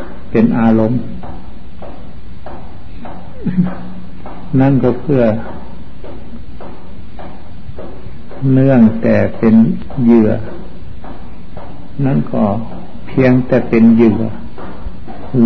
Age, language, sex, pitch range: 60-79, Thai, male, 105-125 Hz